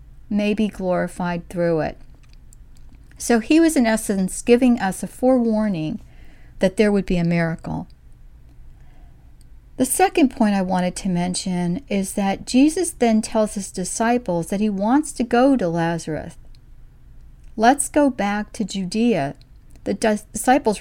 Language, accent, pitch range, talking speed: English, American, 175-225 Hz, 140 wpm